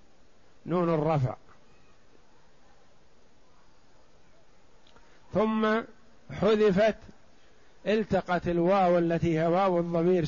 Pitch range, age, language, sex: 160-190 Hz, 50-69, Arabic, male